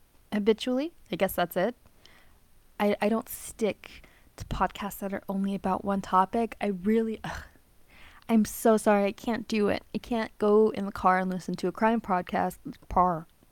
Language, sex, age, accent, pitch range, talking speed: English, female, 10-29, American, 180-220 Hz, 180 wpm